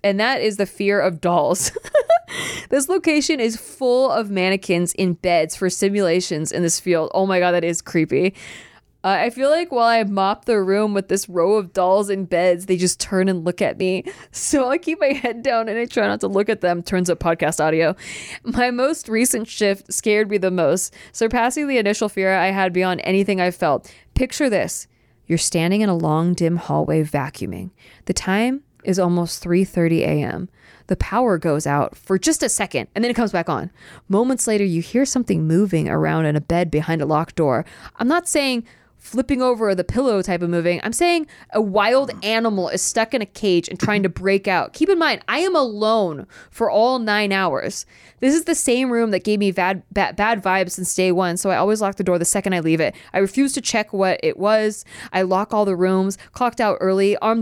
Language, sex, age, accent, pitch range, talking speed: English, female, 20-39, American, 180-230 Hz, 215 wpm